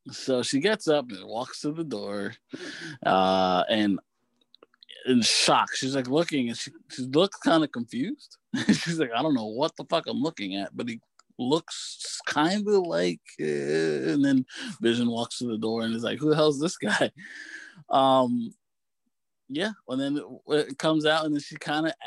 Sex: male